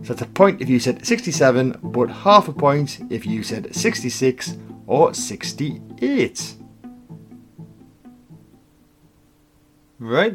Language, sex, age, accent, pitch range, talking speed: English, male, 30-49, British, 120-155 Hz, 110 wpm